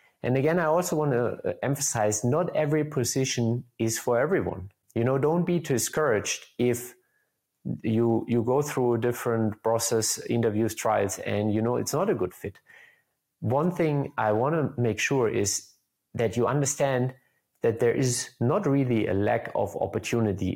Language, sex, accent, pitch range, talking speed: English, male, German, 105-130 Hz, 160 wpm